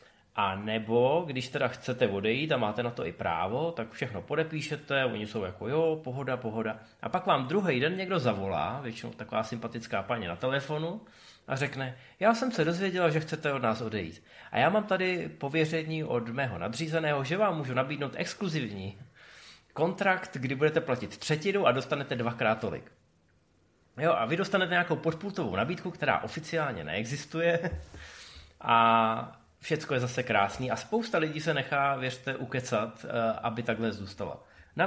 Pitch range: 115-155 Hz